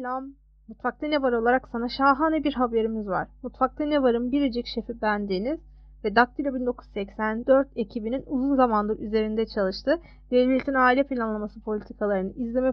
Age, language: 30-49, Turkish